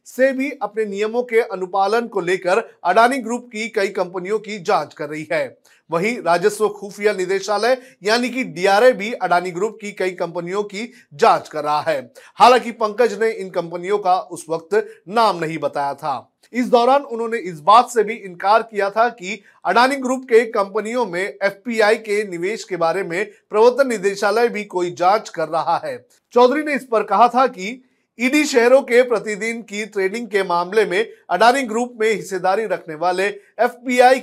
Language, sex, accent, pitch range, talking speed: Hindi, male, native, 190-245 Hz, 145 wpm